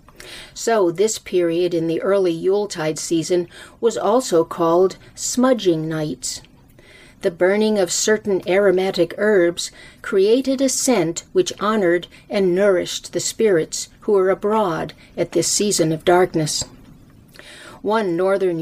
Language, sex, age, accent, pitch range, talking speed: English, female, 50-69, American, 165-220 Hz, 120 wpm